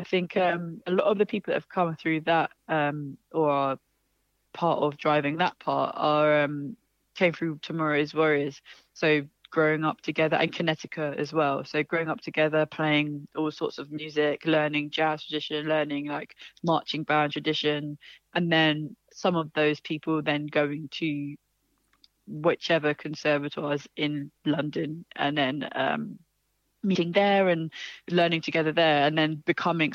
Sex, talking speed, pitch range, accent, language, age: female, 155 wpm, 150-165 Hz, British, English, 20-39